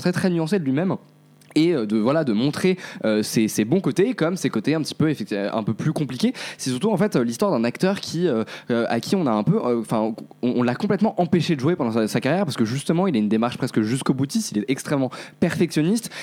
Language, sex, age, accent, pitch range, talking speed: French, male, 20-39, French, 120-180 Hz, 250 wpm